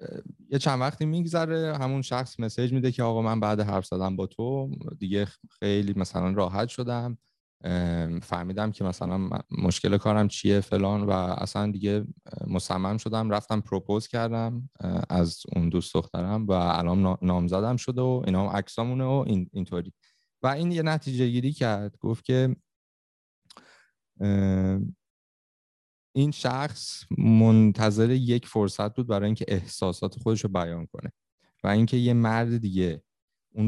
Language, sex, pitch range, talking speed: Persian, male, 95-120 Hz, 135 wpm